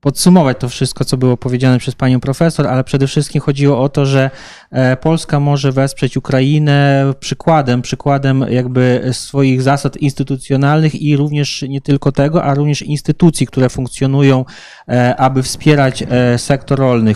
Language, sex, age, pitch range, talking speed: Polish, male, 20-39, 125-140 Hz, 140 wpm